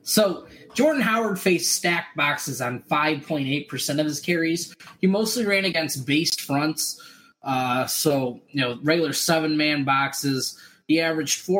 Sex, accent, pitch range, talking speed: male, American, 150-190 Hz, 135 wpm